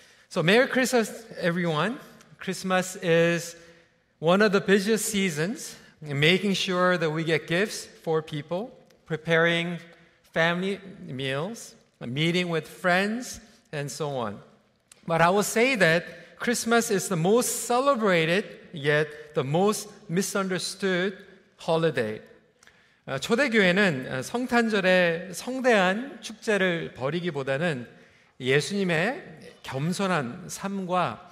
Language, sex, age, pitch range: Korean, male, 40-59, 160-220 Hz